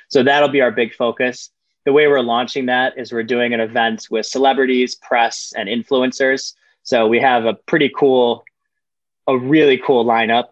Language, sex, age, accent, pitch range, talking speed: English, male, 20-39, American, 110-130 Hz, 175 wpm